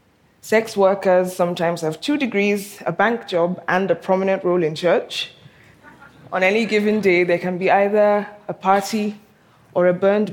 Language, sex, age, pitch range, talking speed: English, female, 20-39, 170-200 Hz, 165 wpm